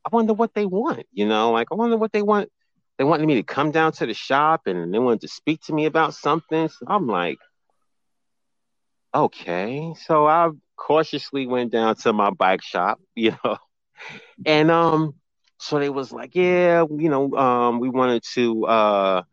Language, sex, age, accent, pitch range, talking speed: English, male, 30-49, American, 110-165 Hz, 185 wpm